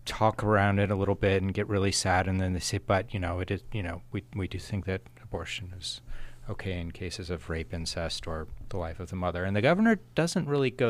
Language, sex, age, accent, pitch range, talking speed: English, male, 30-49, American, 95-120 Hz, 255 wpm